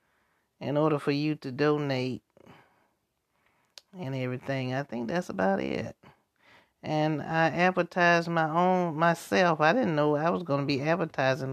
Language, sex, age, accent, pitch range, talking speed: English, male, 30-49, American, 140-170 Hz, 145 wpm